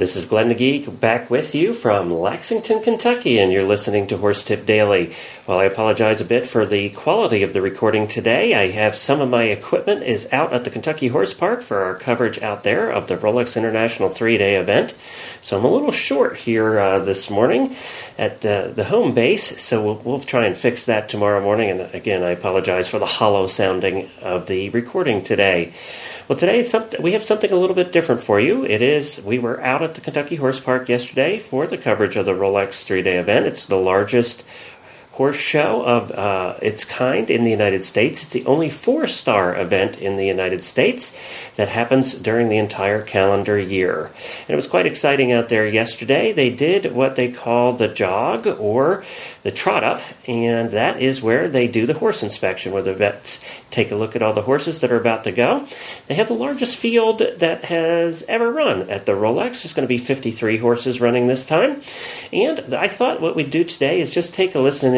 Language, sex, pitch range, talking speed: English, male, 105-145 Hz, 210 wpm